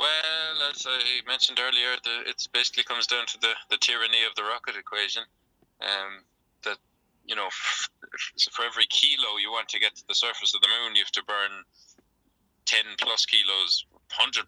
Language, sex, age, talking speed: English, male, 20-39, 175 wpm